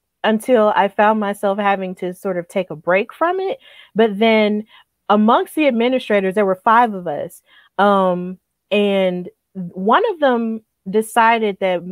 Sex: female